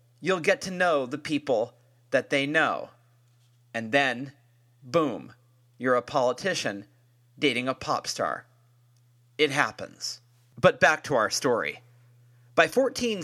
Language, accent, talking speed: English, American, 125 wpm